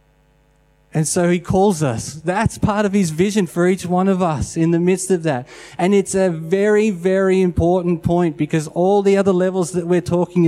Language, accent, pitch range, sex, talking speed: English, Australian, 140-185 Hz, male, 200 wpm